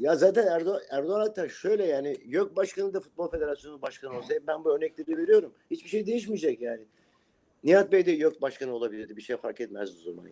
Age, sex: 50-69, male